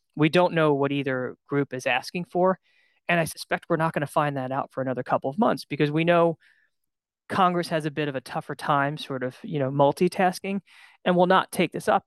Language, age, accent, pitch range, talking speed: English, 20-39, American, 130-160 Hz, 230 wpm